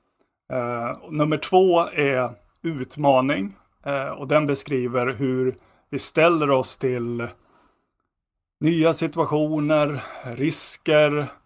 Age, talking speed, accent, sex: 30-49, 90 wpm, native, male